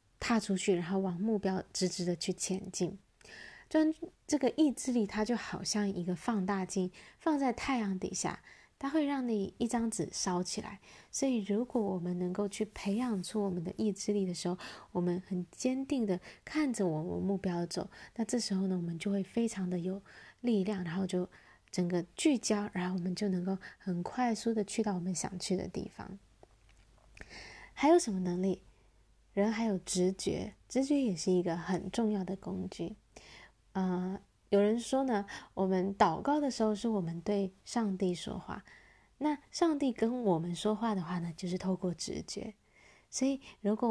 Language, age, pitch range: Chinese, 20-39, 185-225 Hz